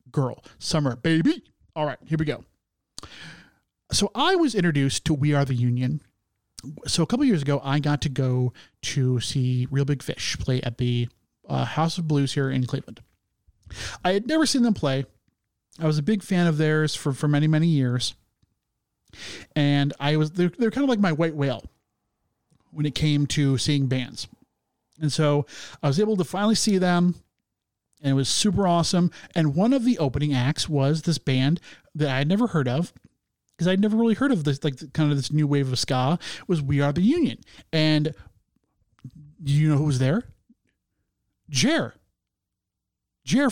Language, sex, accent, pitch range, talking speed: English, male, American, 135-175 Hz, 185 wpm